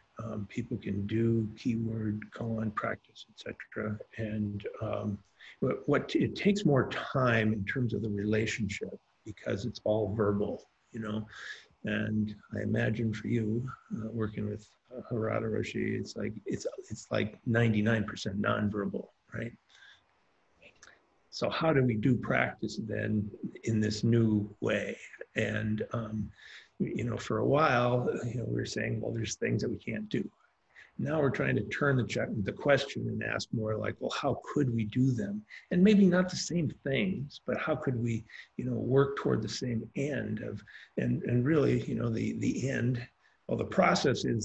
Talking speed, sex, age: 175 wpm, male, 50-69